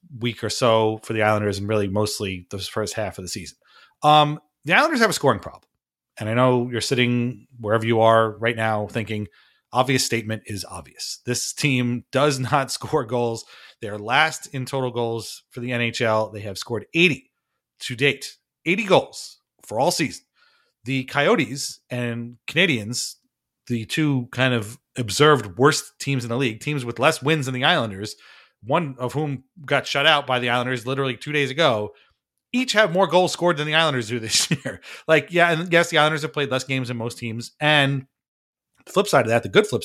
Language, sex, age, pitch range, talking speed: English, male, 30-49, 115-150 Hz, 195 wpm